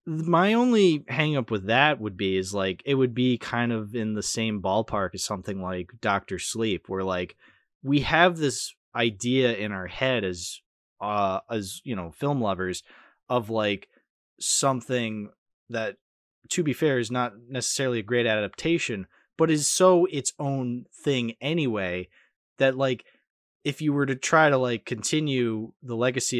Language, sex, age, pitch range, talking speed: English, male, 20-39, 110-140 Hz, 160 wpm